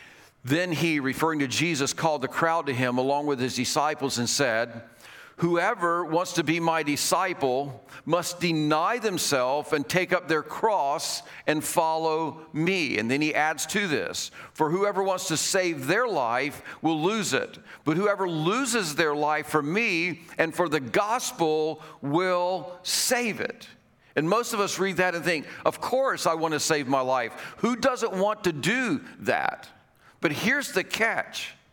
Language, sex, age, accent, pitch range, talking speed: English, male, 50-69, American, 155-195 Hz, 170 wpm